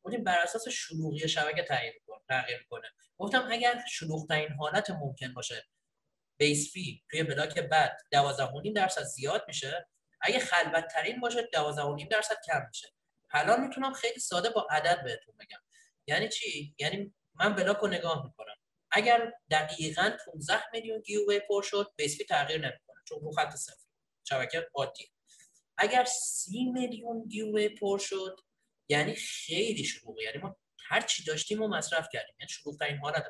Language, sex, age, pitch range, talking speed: Persian, male, 30-49, 150-225 Hz, 135 wpm